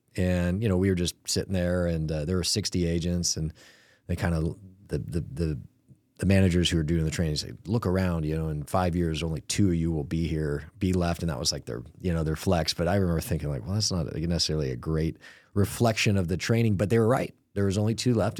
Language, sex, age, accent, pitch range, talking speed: English, male, 30-49, American, 85-100 Hz, 250 wpm